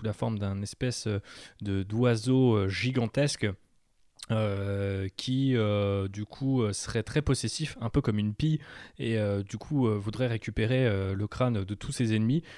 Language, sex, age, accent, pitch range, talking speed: French, male, 20-39, French, 105-135 Hz, 170 wpm